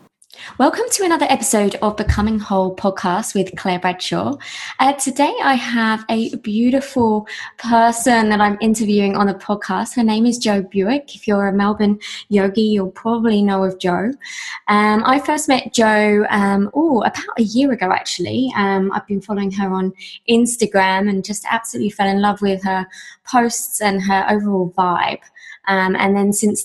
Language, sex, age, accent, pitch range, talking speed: English, female, 20-39, British, 190-230 Hz, 165 wpm